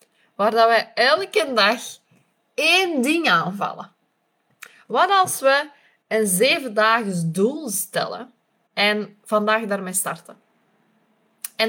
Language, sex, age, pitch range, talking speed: Dutch, female, 20-39, 205-245 Hz, 100 wpm